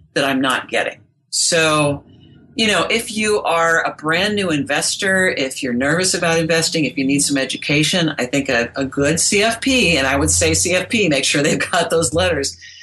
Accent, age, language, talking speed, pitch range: American, 50-69, English, 190 wpm, 145-190 Hz